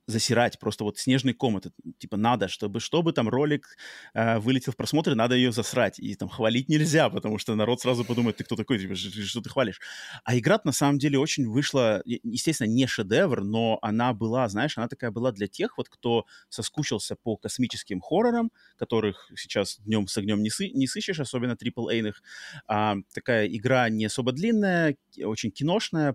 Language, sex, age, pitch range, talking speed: Russian, male, 30-49, 110-135 Hz, 170 wpm